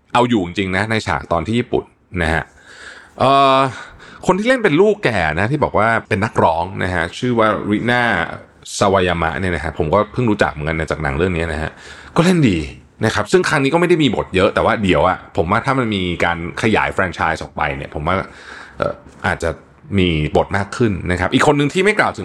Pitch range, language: 85-120 Hz, Thai